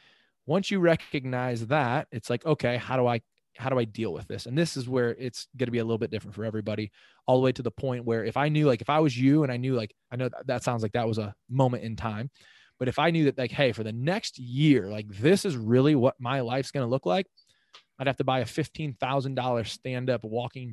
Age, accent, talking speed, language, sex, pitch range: 20-39, American, 265 wpm, English, male, 115-140 Hz